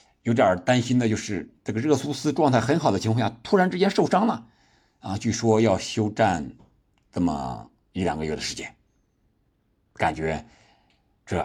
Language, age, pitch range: Chinese, 60-79, 90-130 Hz